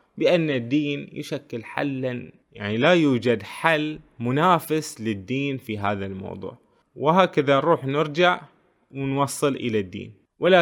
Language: Arabic